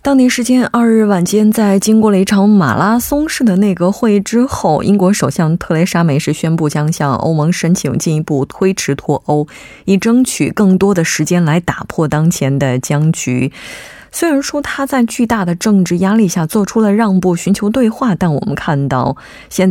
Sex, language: female, Korean